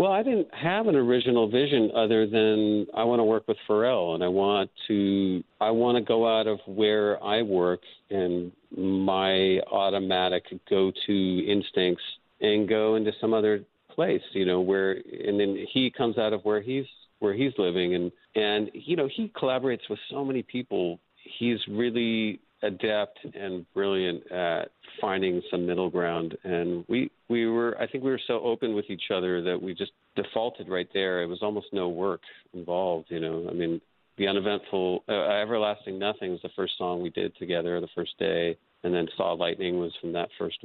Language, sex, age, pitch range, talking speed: English, male, 50-69, 90-110 Hz, 185 wpm